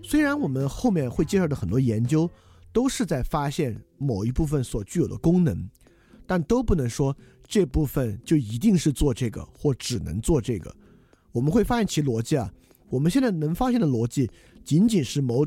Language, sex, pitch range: Chinese, male, 110-160 Hz